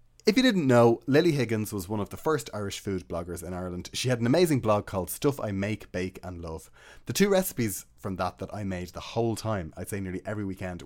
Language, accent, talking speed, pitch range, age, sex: English, Irish, 245 wpm, 90-120 Hz, 30-49, male